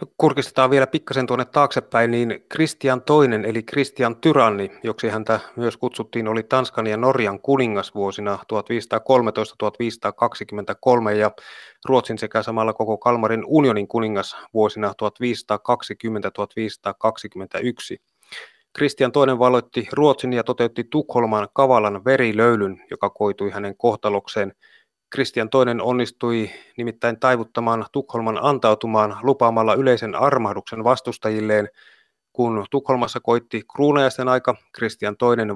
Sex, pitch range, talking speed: male, 110-130 Hz, 105 wpm